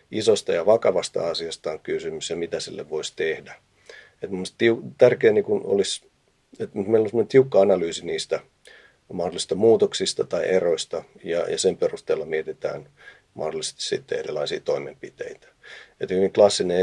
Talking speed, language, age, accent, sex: 130 wpm, Finnish, 40-59, native, male